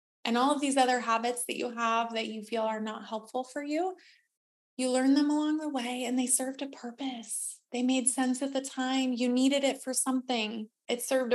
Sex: female